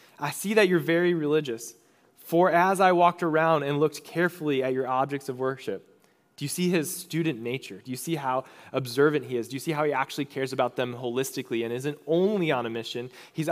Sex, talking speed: male, 215 wpm